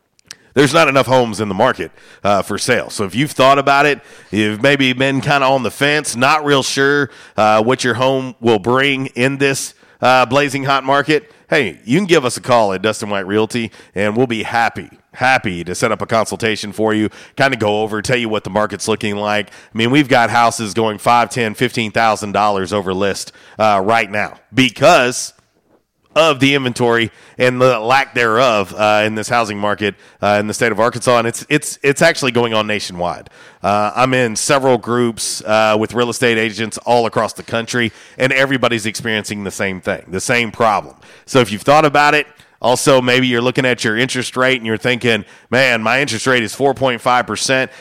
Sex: male